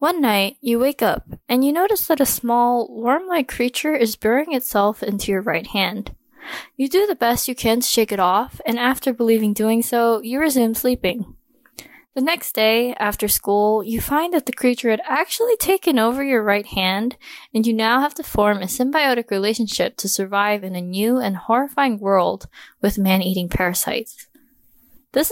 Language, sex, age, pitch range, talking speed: English, female, 10-29, 210-275 Hz, 180 wpm